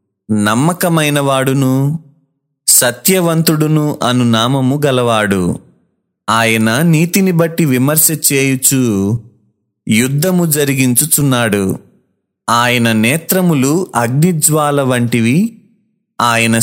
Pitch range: 115-160 Hz